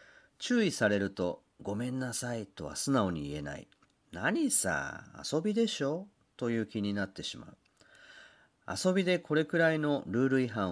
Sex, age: male, 40-59